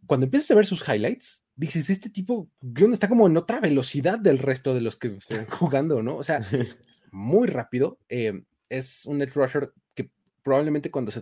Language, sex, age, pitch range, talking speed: Spanish, male, 30-49, 115-150 Hz, 200 wpm